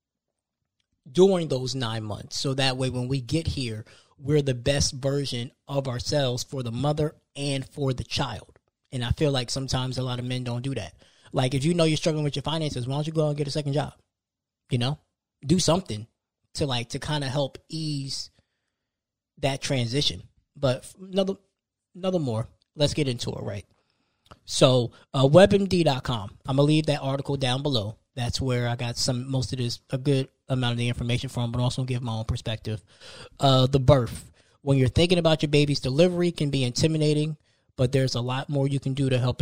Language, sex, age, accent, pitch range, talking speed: English, male, 20-39, American, 120-145 Hz, 200 wpm